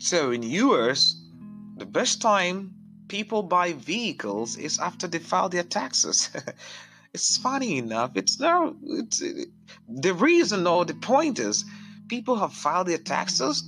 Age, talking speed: 30-49, 150 wpm